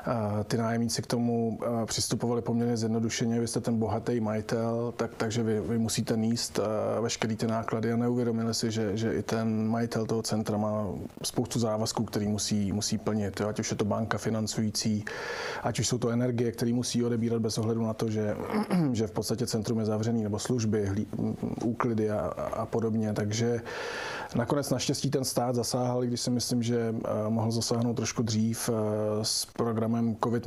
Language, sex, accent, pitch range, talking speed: Czech, male, native, 110-115 Hz, 175 wpm